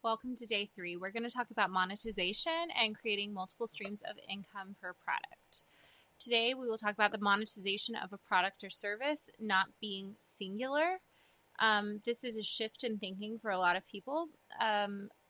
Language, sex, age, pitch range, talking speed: English, female, 20-39, 195-240 Hz, 180 wpm